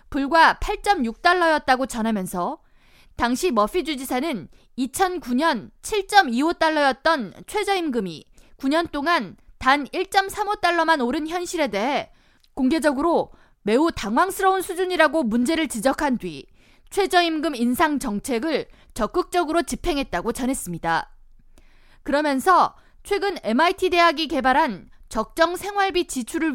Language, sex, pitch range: Korean, female, 245-345 Hz